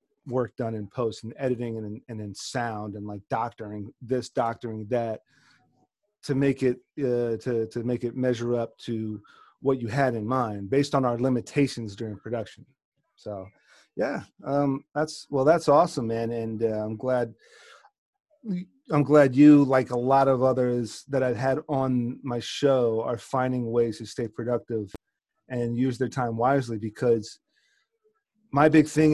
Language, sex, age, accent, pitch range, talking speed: English, male, 30-49, American, 115-140 Hz, 165 wpm